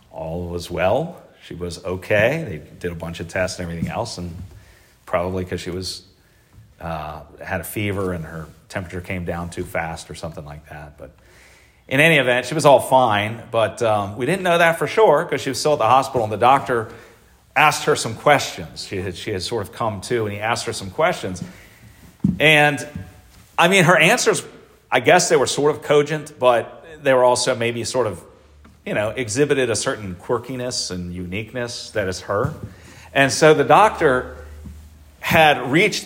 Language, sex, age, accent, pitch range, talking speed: English, male, 40-59, American, 90-140 Hz, 190 wpm